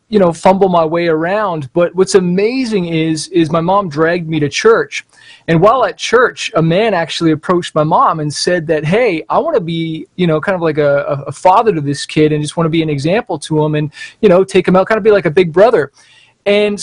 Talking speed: 250 wpm